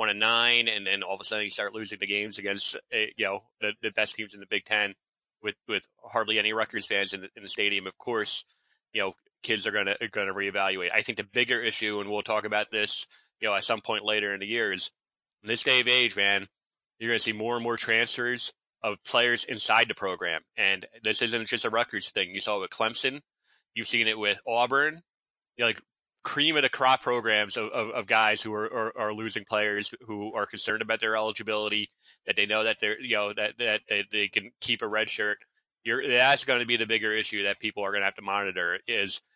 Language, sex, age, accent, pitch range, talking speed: English, male, 20-39, American, 105-120 Hz, 240 wpm